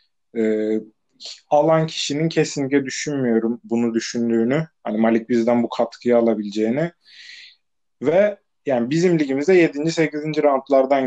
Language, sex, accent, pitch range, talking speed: Turkish, male, native, 130-165 Hz, 105 wpm